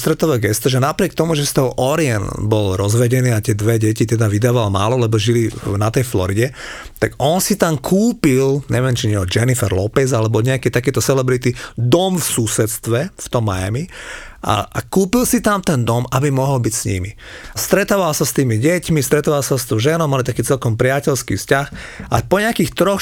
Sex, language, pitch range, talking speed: male, Slovak, 120-160 Hz, 190 wpm